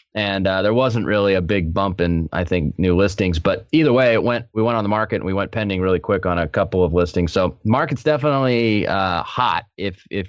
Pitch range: 90-115 Hz